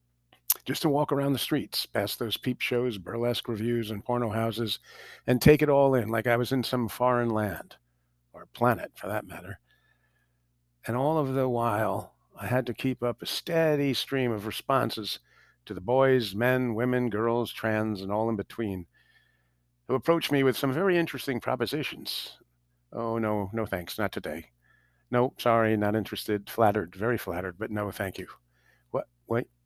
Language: English